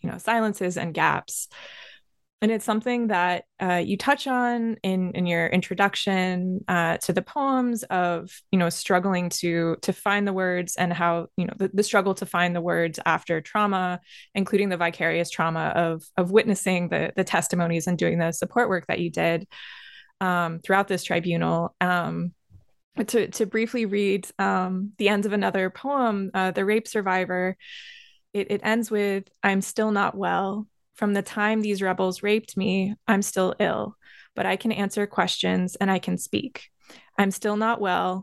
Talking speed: 175 wpm